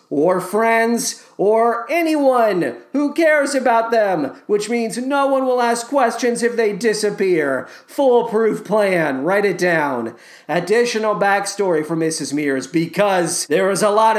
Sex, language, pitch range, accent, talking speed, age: male, English, 165-240 Hz, American, 140 wpm, 40-59